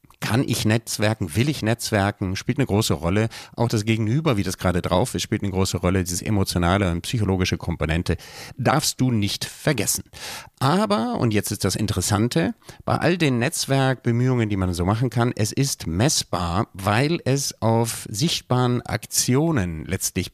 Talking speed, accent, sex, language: 160 wpm, German, male, German